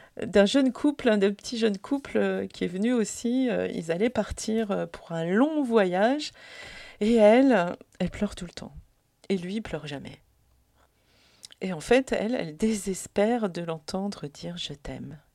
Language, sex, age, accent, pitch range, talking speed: French, female, 40-59, French, 170-235 Hz, 160 wpm